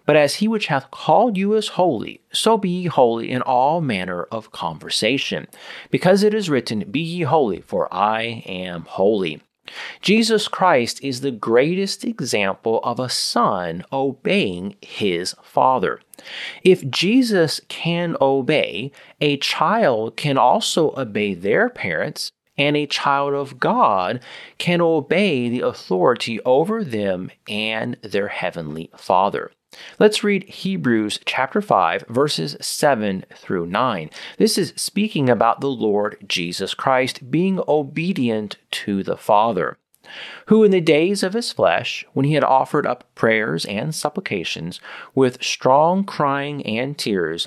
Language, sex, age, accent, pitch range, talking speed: English, male, 30-49, American, 115-180 Hz, 140 wpm